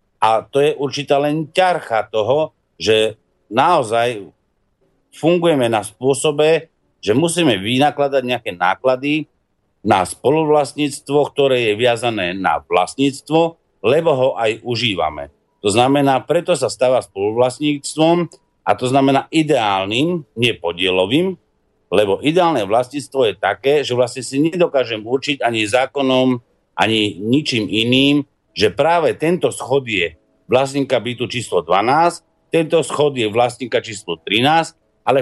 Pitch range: 115-150 Hz